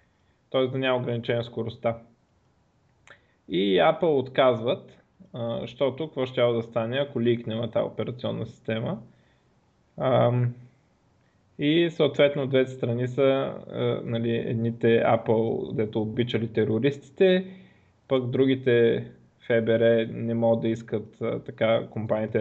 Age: 20-39